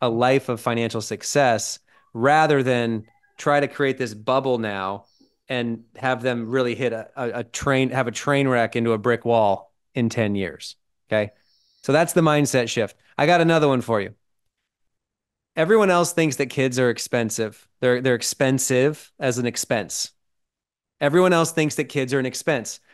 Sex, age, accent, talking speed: male, 30-49, American, 175 wpm